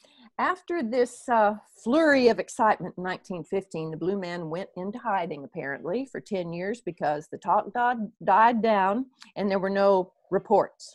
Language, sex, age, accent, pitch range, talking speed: English, female, 50-69, American, 180-235 Hz, 160 wpm